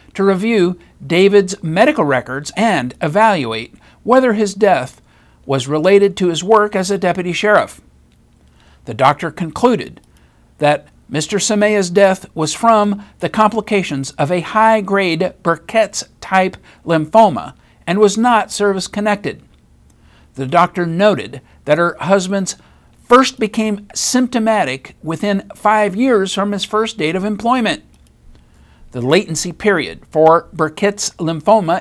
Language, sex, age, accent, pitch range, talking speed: English, male, 60-79, American, 150-210 Hz, 120 wpm